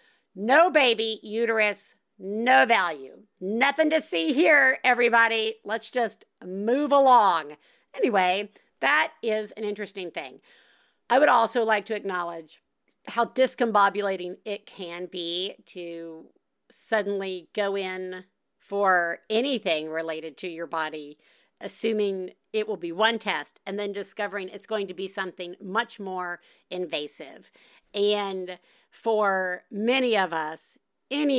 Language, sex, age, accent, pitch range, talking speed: English, female, 50-69, American, 180-245 Hz, 120 wpm